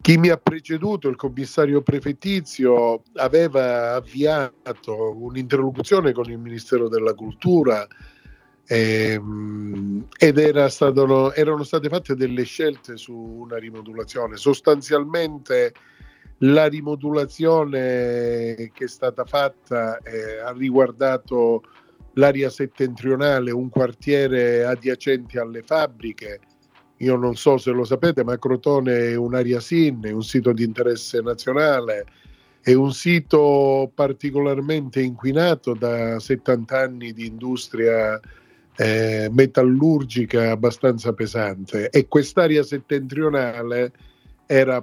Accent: native